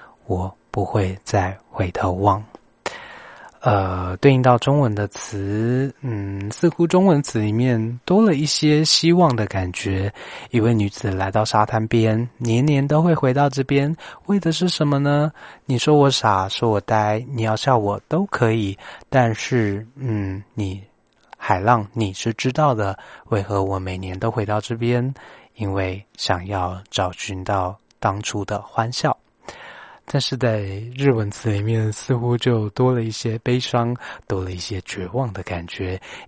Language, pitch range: Chinese, 100-130 Hz